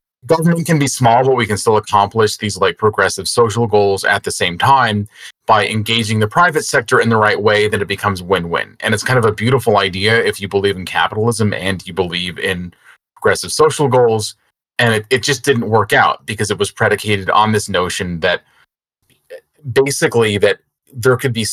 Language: English